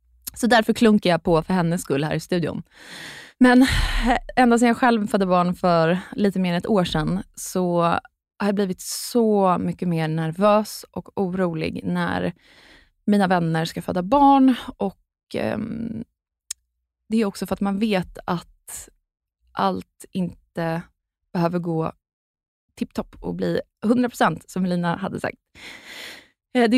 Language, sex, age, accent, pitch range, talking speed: Swedish, female, 20-39, native, 180-230 Hz, 145 wpm